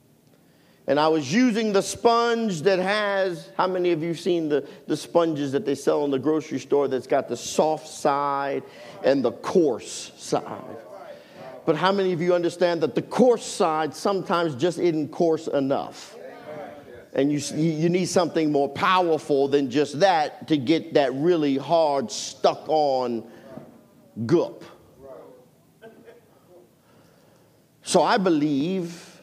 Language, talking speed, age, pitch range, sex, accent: English, 140 wpm, 50-69, 160-230 Hz, male, American